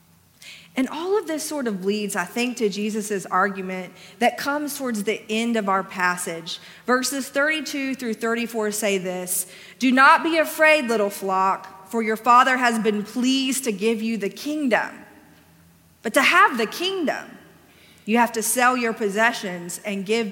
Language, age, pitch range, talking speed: English, 30-49, 200-255 Hz, 165 wpm